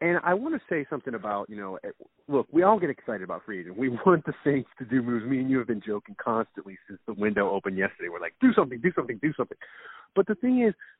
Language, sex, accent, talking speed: English, male, American, 260 wpm